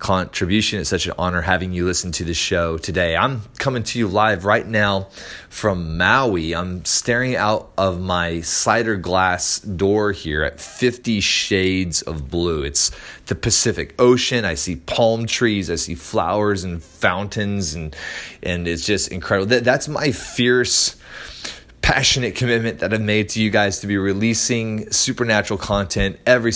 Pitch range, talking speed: 90-115 Hz, 160 wpm